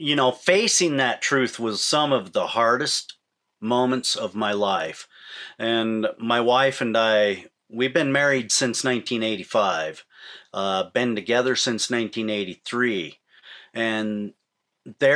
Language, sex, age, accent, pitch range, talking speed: English, male, 40-59, American, 110-130 Hz, 115 wpm